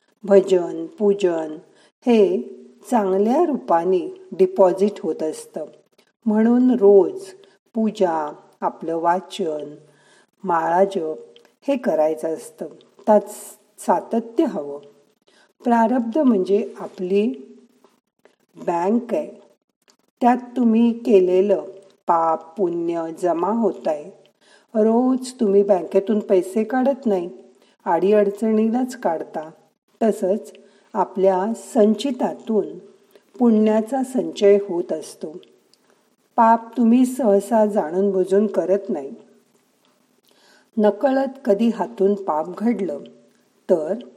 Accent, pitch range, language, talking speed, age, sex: native, 190-235 Hz, Marathi, 85 wpm, 50-69, female